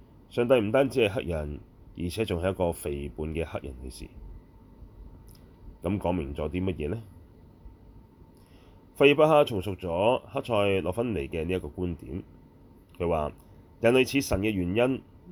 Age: 30-49